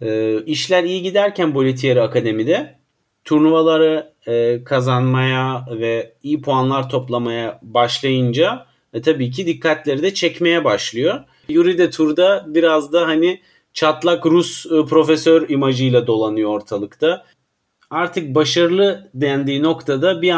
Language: Turkish